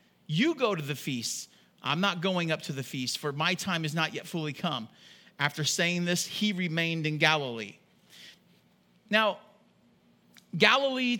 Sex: male